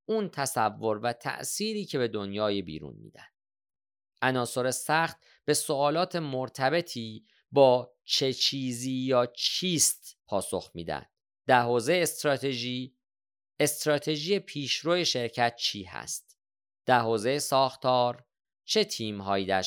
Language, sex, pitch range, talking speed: Persian, male, 105-140 Hz, 110 wpm